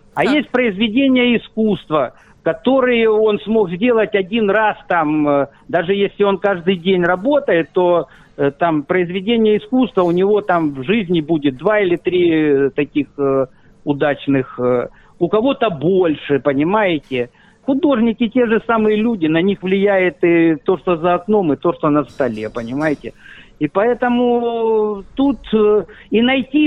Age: 50-69